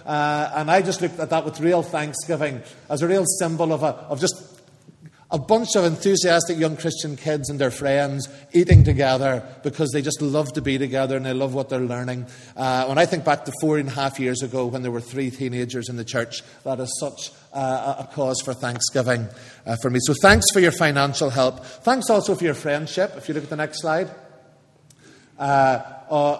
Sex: male